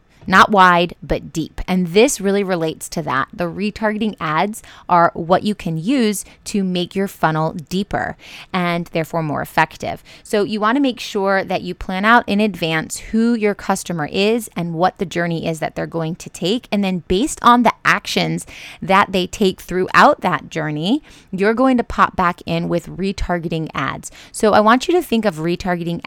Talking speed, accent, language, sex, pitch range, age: 190 wpm, American, English, female, 170-215 Hz, 20-39